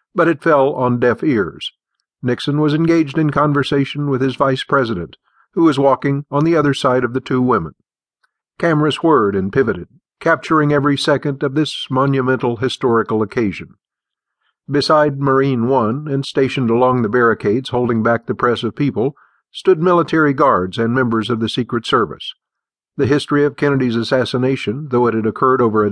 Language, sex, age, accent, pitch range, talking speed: English, male, 50-69, American, 120-145 Hz, 165 wpm